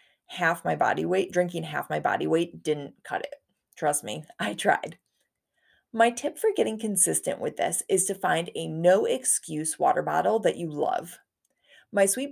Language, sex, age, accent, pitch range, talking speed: English, female, 30-49, American, 175-255 Hz, 170 wpm